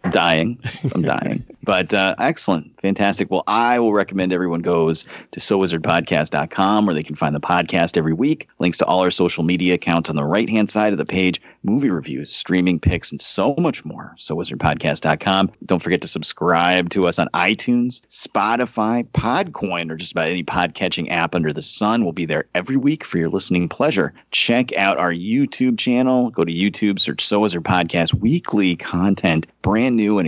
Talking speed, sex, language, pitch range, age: 180 wpm, male, English, 85-115 Hz, 30-49